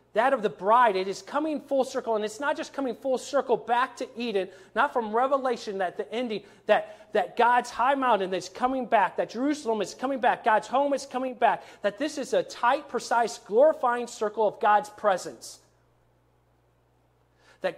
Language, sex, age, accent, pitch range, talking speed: English, male, 40-59, American, 210-270 Hz, 185 wpm